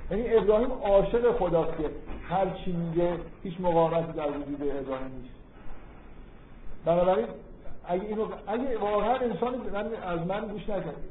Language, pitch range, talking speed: Persian, 155-200 Hz, 110 wpm